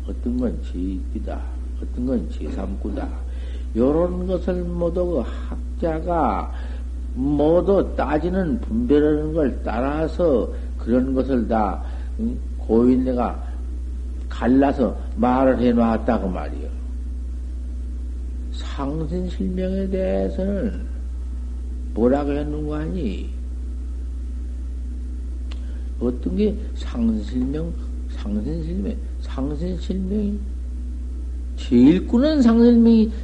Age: 60-79